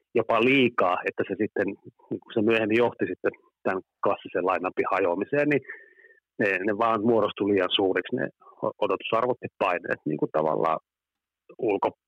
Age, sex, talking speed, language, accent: 30-49, male, 145 wpm, Finnish, native